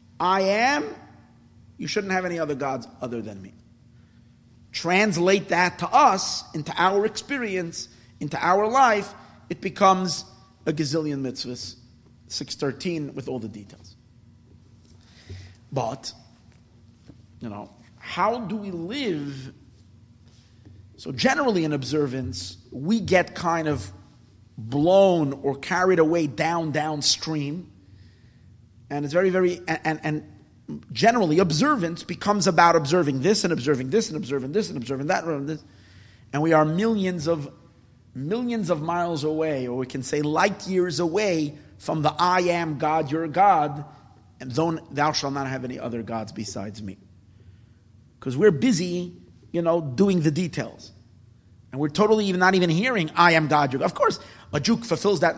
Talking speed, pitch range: 145 wpm, 115-175 Hz